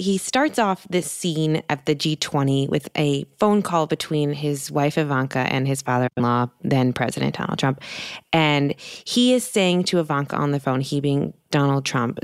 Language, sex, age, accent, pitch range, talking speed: English, female, 20-39, American, 140-185 Hz, 175 wpm